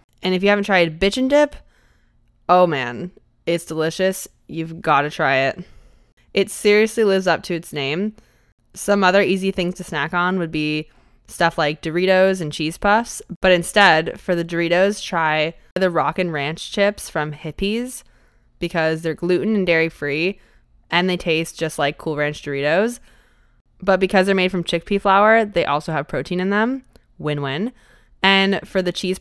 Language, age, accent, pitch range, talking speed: English, 20-39, American, 160-195 Hz, 170 wpm